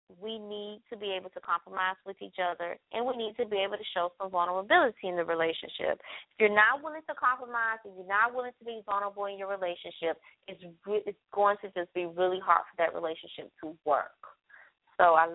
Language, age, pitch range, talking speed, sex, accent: English, 20-39, 185-230 Hz, 210 wpm, female, American